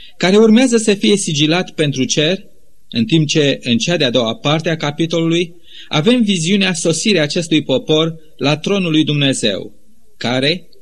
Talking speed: 150 wpm